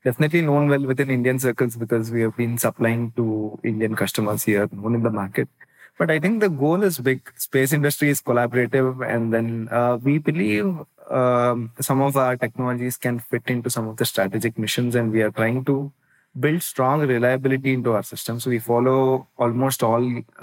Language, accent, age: English, Indian, 20-39